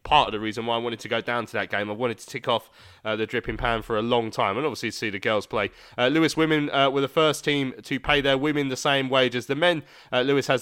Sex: male